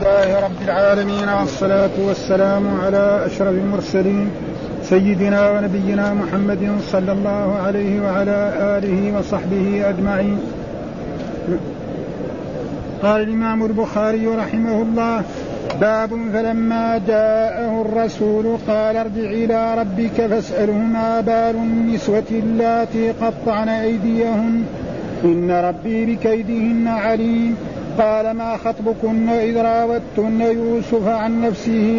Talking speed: 90 wpm